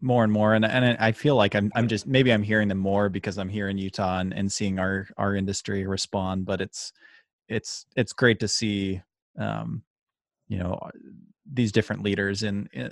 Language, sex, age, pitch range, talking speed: English, male, 20-39, 95-110 Hz, 200 wpm